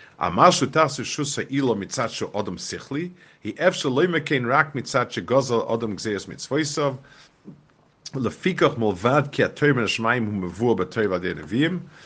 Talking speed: 105 wpm